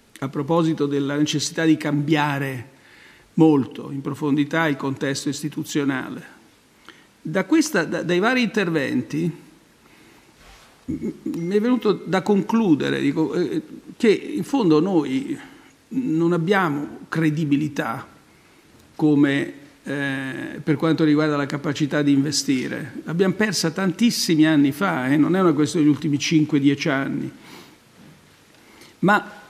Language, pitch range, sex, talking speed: Italian, 145-190 Hz, male, 115 wpm